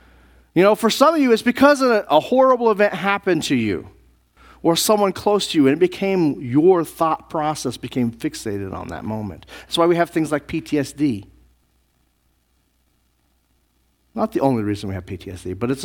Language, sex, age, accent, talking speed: English, male, 40-59, American, 180 wpm